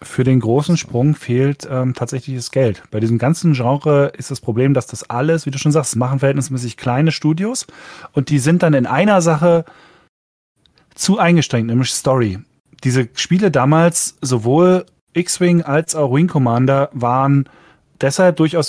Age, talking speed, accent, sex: 30-49, 160 wpm, German, male